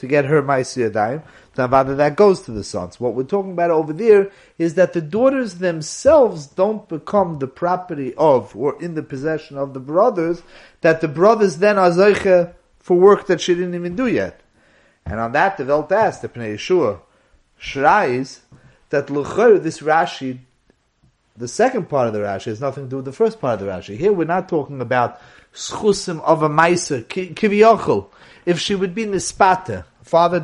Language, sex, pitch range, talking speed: English, male, 135-185 Hz, 175 wpm